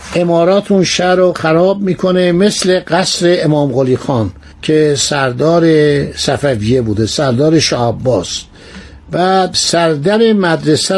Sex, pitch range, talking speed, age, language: male, 150-195 Hz, 95 wpm, 60-79, Persian